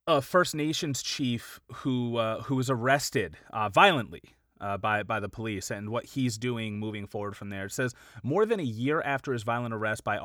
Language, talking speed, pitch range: English, 205 wpm, 115-145 Hz